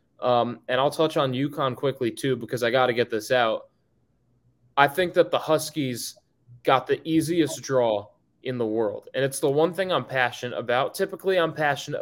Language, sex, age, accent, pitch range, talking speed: English, male, 20-39, American, 130-170 Hz, 190 wpm